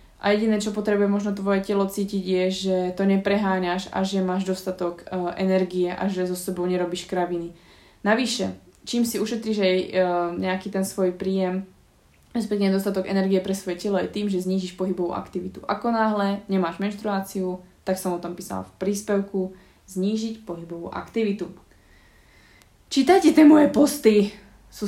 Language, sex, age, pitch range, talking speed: Slovak, female, 20-39, 185-220 Hz, 155 wpm